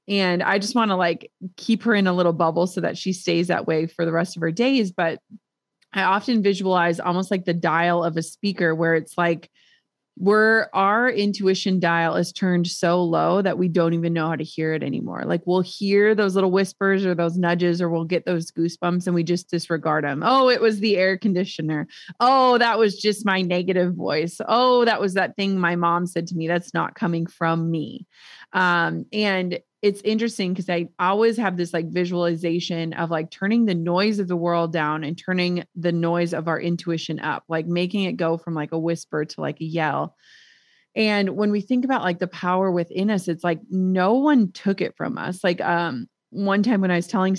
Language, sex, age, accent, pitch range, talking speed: English, female, 20-39, American, 170-205 Hz, 215 wpm